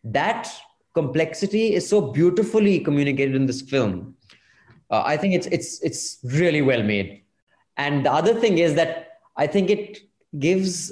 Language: English